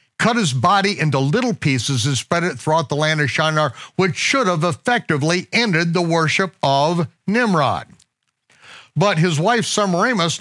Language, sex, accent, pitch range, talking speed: English, male, American, 125-185 Hz, 155 wpm